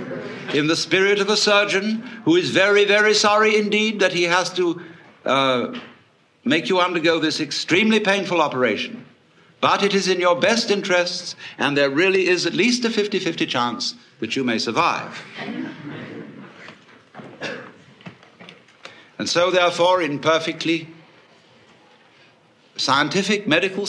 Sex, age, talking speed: male, 60-79, 130 wpm